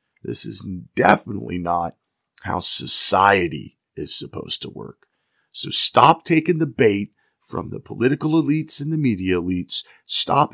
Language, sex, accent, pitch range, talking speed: English, male, American, 95-125 Hz, 135 wpm